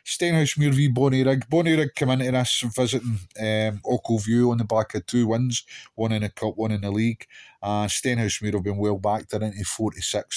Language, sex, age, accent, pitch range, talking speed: English, male, 30-49, British, 100-120 Hz, 210 wpm